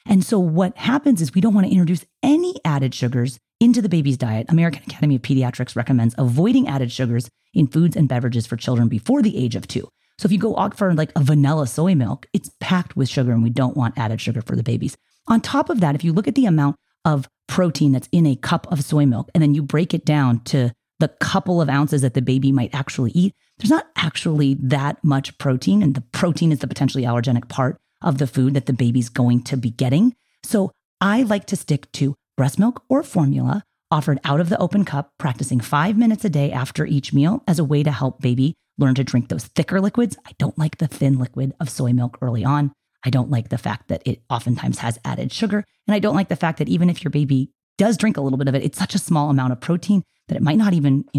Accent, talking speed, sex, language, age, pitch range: American, 245 wpm, female, English, 30-49, 130-180 Hz